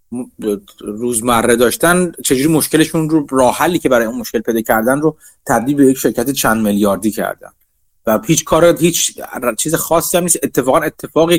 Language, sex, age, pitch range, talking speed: Persian, male, 30-49, 115-150 Hz, 160 wpm